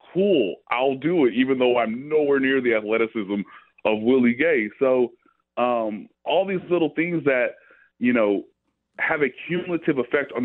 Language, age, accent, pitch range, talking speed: English, 30-49, American, 105-135 Hz, 160 wpm